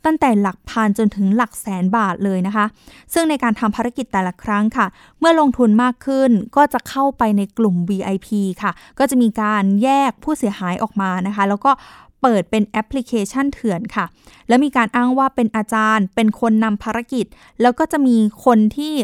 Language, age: Thai, 20-39